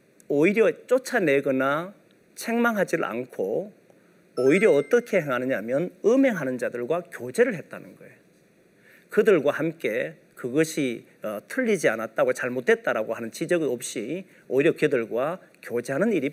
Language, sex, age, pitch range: Korean, male, 40-59, 145-240 Hz